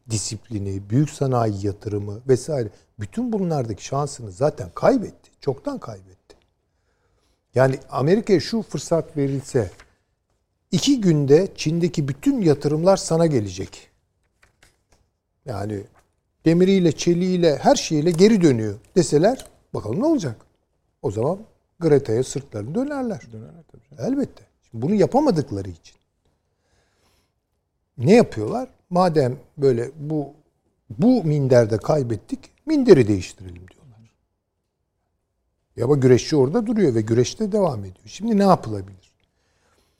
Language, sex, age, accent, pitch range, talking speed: Turkish, male, 60-79, native, 100-165 Hz, 100 wpm